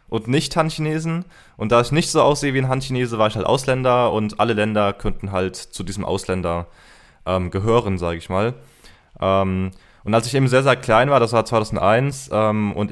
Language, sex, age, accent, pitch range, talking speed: German, male, 20-39, German, 100-135 Hz, 200 wpm